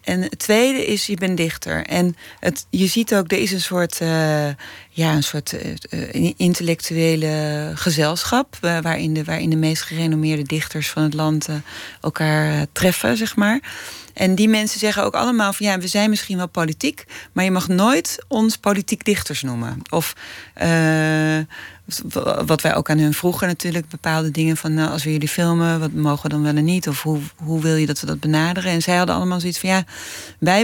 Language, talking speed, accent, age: Dutch, 195 wpm, Dutch, 30-49